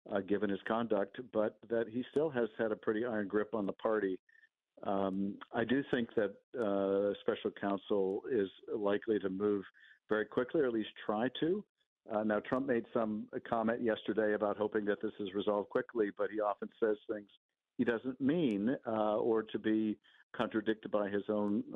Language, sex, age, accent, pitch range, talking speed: English, male, 50-69, American, 105-120 Hz, 180 wpm